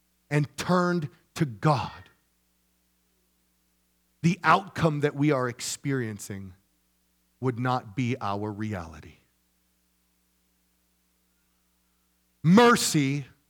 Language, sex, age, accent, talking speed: English, male, 40-59, American, 70 wpm